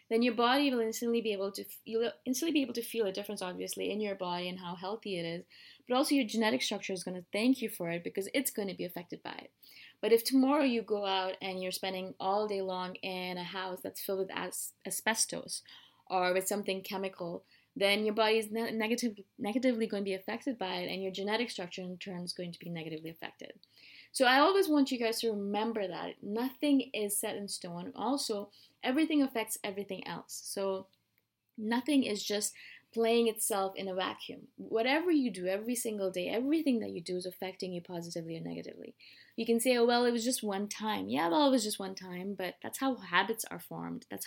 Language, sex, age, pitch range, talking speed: English, female, 20-39, 185-235 Hz, 220 wpm